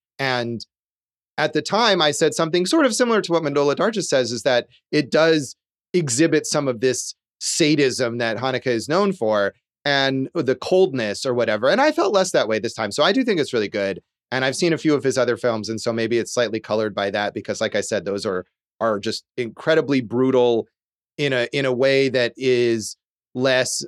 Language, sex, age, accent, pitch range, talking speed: English, male, 30-49, American, 115-155 Hz, 210 wpm